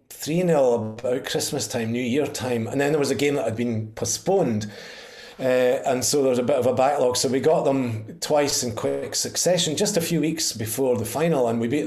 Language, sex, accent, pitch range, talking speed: English, male, British, 115-135 Hz, 225 wpm